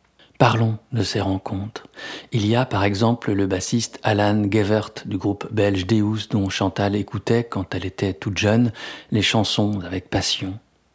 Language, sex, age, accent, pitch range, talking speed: French, male, 50-69, French, 95-115 Hz, 160 wpm